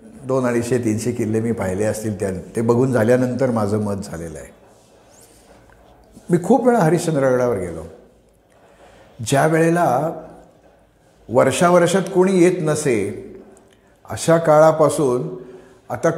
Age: 60-79